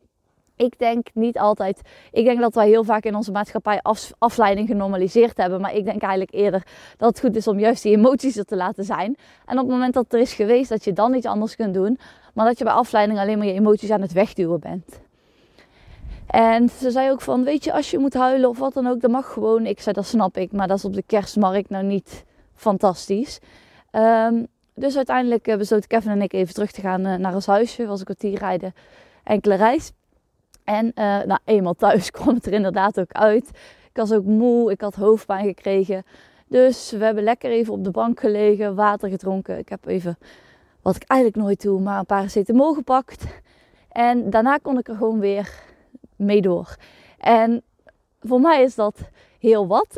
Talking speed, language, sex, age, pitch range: 210 wpm, Dutch, female, 20-39, 200-235 Hz